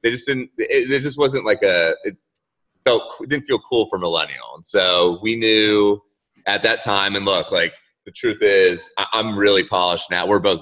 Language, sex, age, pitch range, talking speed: English, male, 20-39, 90-150 Hz, 205 wpm